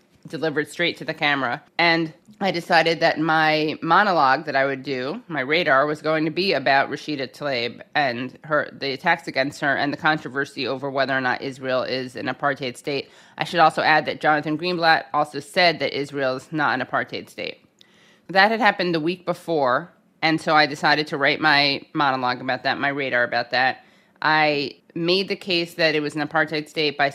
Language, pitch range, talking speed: English, 145-165 Hz, 195 wpm